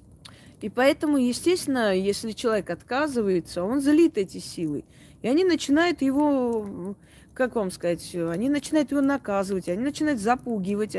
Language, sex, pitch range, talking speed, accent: Russian, female, 185-245 Hz, 130 wpm, native